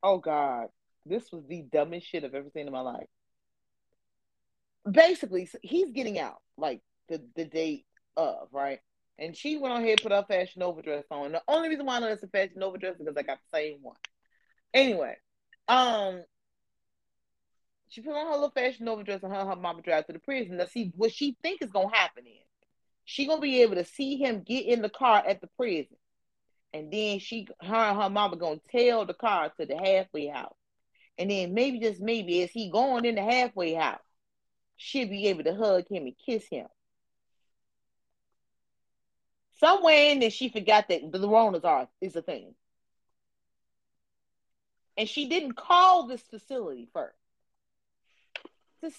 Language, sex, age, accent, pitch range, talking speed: English, female, 30-49, American, 175-270 Hz, 180 wpm